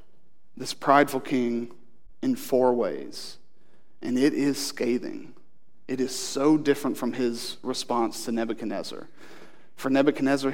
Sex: male